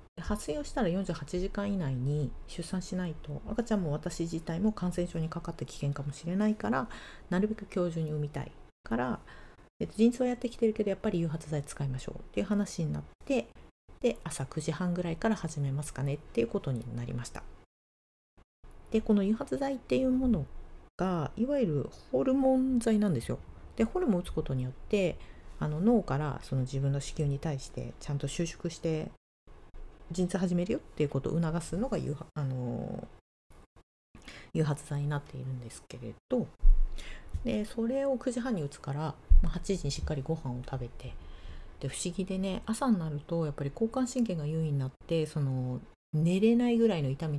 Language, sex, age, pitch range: Japanese, female, 40-59, 135-195 Hz